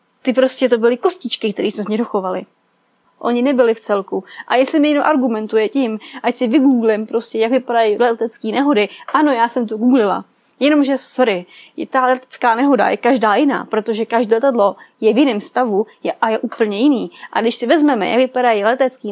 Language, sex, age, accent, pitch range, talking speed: Czech, female, 20-39, native, 220-275 Hz, 180 wpm